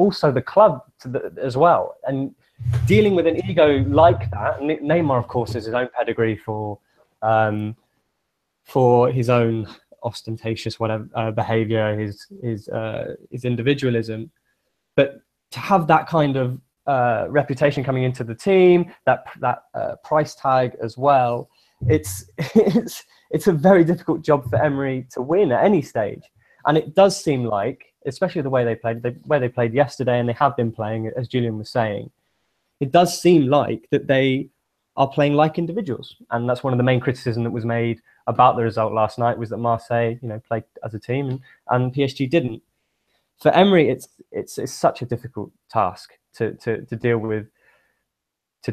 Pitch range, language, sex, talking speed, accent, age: 115-145 Hz, English, male, 180 wpm, British, 20-39